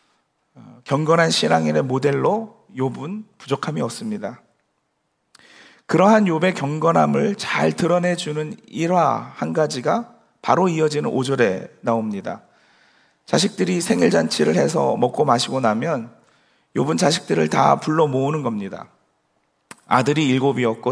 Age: 40-59